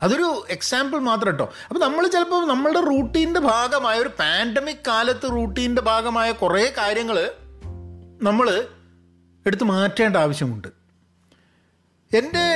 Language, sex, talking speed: Malayalam, male, 105 wpm